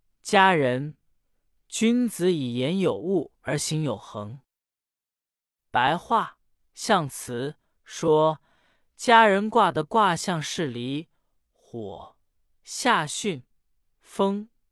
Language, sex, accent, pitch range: Chinese, male, native, 130-205 Hz